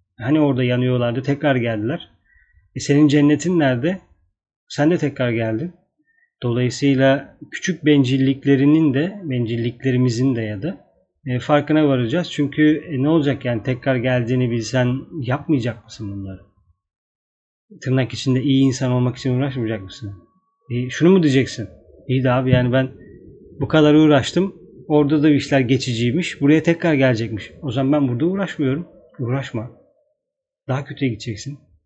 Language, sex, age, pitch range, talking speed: Turkish, male, 40-59, 120-150 Hz, 135 wpm